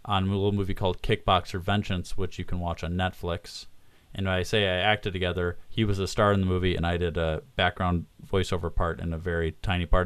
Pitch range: 90-115 Hz